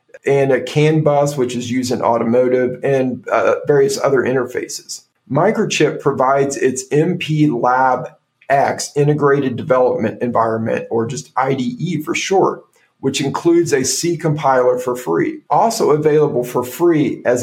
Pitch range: 130-165 Hz